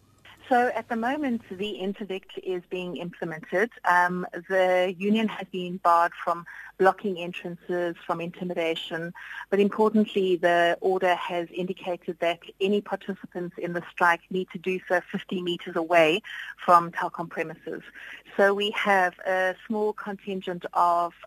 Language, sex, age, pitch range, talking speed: English, female, 30-49, 165-200 Hz, 140 wpm